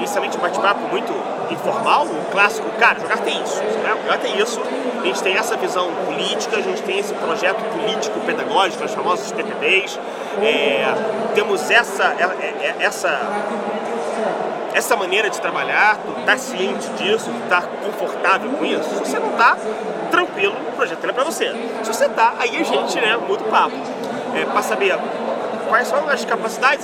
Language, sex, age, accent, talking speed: Portuguese, male, 30-49, Brazilian, 175 wpm